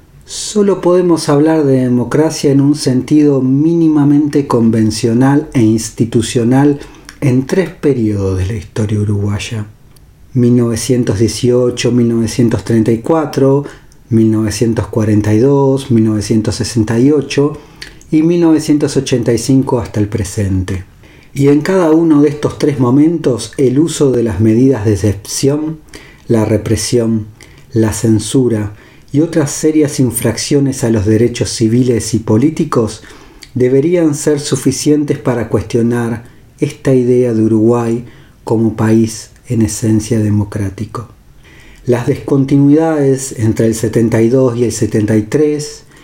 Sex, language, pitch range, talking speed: male, Spanish, 110-145 Hz, 105 wpm